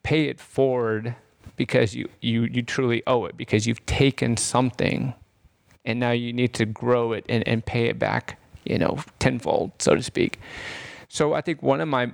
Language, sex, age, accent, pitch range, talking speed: English, male, 30-49, American, 110-120 Hz, 190 wpm